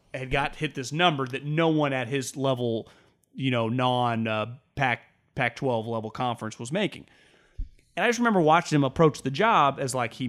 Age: 30-49